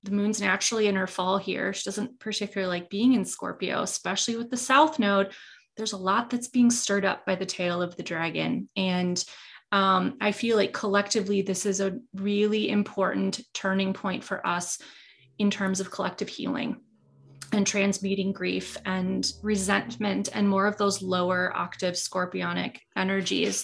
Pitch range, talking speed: 190-235 Hz, 165 wpm